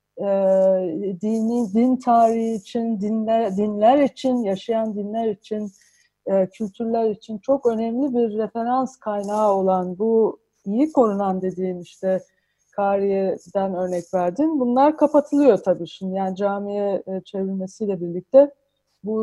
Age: 40-59